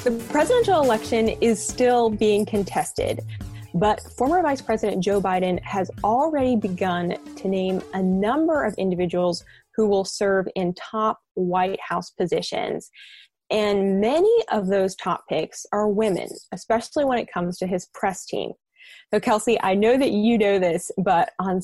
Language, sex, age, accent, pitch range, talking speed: English, female, 20-39, American, 190-245 Hz, 155 wpm